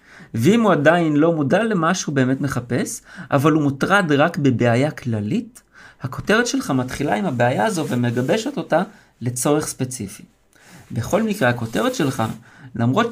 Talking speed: 135 wpm